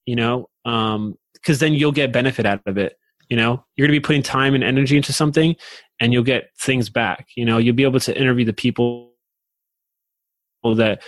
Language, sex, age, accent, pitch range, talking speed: English, male, 20-39, American, 110-135 Hz, 205 wpm